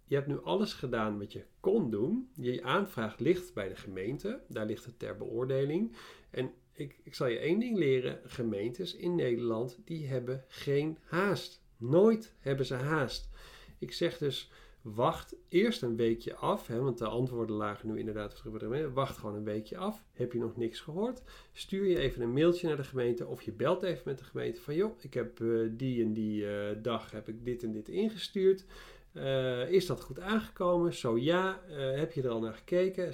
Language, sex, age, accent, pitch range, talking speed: Dutch, male, 40-59, Dutch, 115-170 Hz, 190 wpm